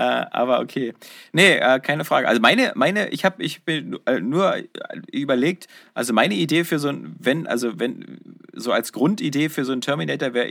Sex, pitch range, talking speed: male, 120-155 Hz, 175 wpm